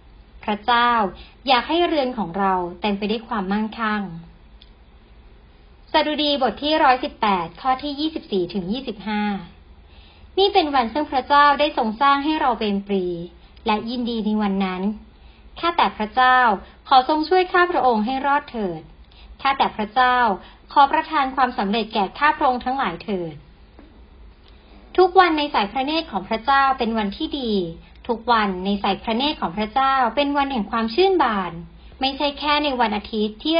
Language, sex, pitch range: Thai, male, 200-280 Hz